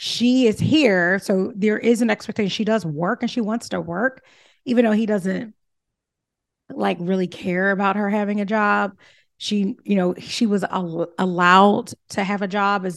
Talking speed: 185 wpm